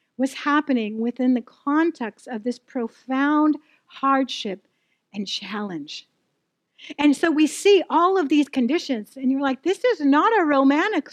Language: English